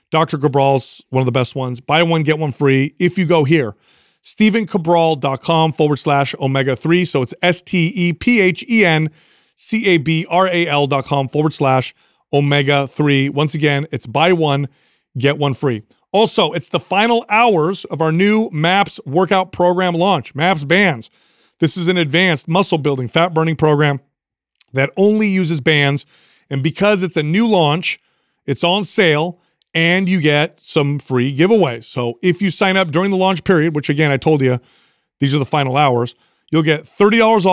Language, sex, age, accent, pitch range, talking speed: English, male, 30-49, American, 145-180 Hz, 155 wpm